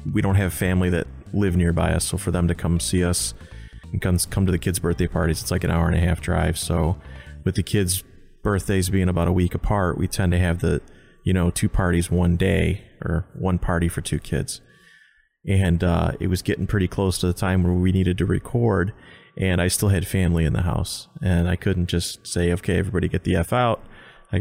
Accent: American